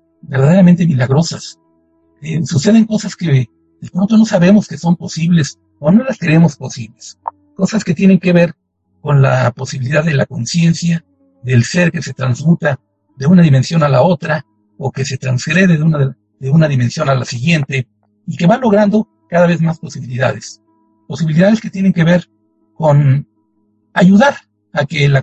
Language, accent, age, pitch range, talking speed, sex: Spanish, Mexican, 60-79, 130-180 Hz, 165 wpm, male